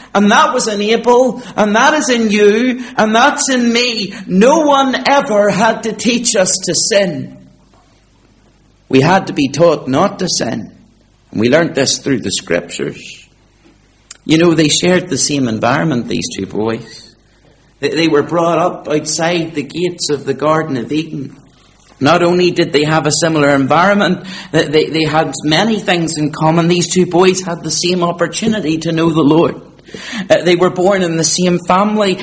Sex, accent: male, British